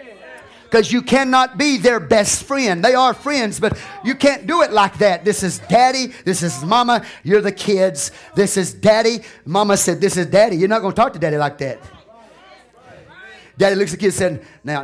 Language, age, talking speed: English, 30-49, 200 wpm